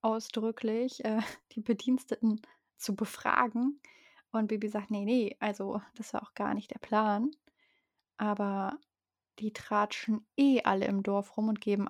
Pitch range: 205-255 Hz